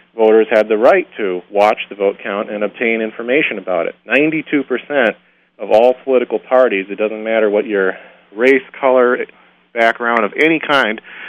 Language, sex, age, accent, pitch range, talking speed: English, male, 40-59, American, 100-125 Hz, 165 wpm